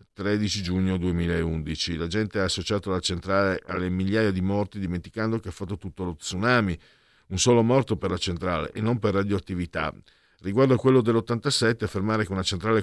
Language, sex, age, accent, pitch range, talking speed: Italian, male, 50-69, native, 85-105 Hz, 180 wpm